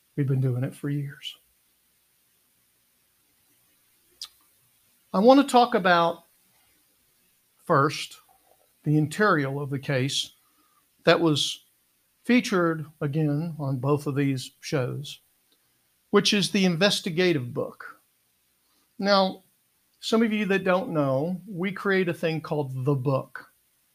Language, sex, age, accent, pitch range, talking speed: English, male, 60-79, American, 135-175 Hz, 115 wpm